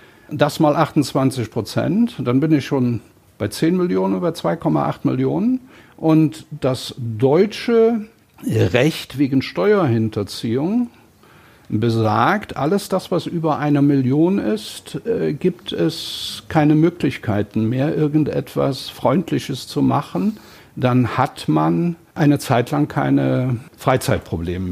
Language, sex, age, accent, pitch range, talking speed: German, male, 60-79, German, 120-185 Hz, 110 wpm